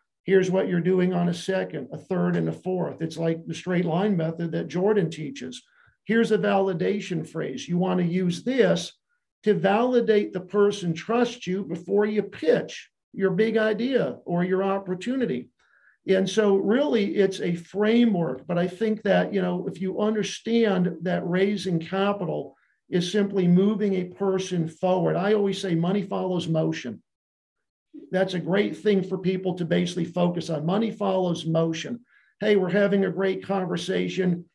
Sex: male